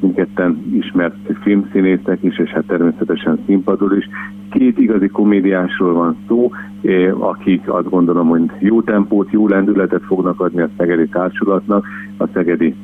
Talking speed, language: 140 wpm, Hungarian